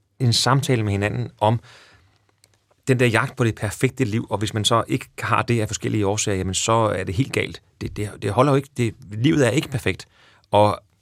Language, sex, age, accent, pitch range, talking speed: Danish, male, 30-49, native, 100-125 Hz, 220 wpm